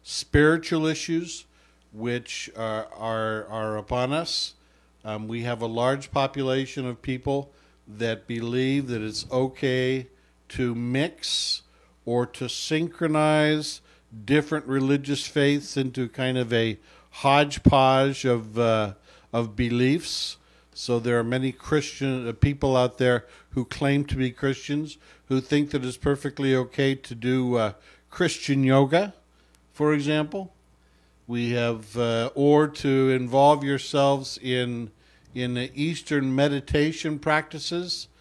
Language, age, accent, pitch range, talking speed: English, 60-79, American, 115-145 Hz, 120 wpm